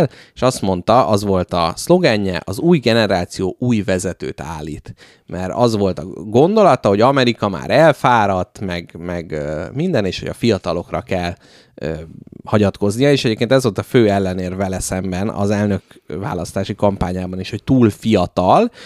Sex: male